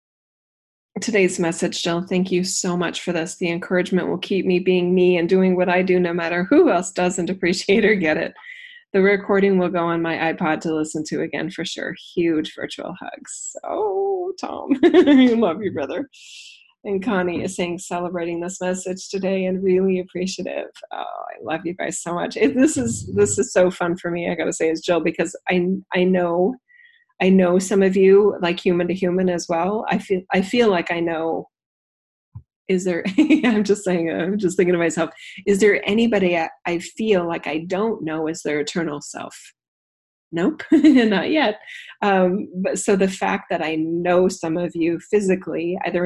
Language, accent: English, American